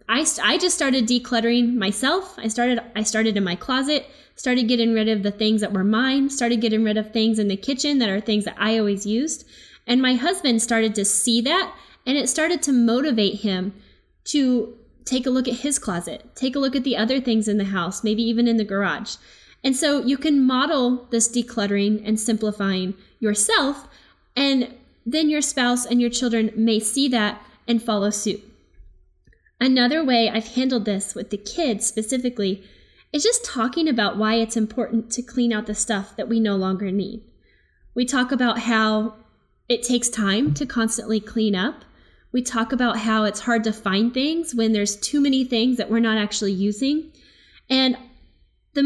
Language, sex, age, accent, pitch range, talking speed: English, female, 10-29, American, 215-260 Hz, 185 wpm